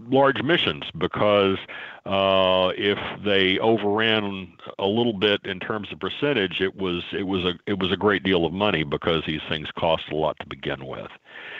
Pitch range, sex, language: 95-115 Hz, male, English